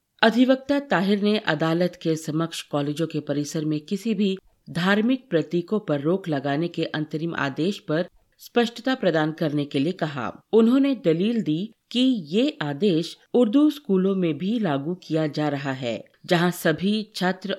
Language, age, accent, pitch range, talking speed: Hindi, 50-69, native, 155-210 Hz, 155 wpm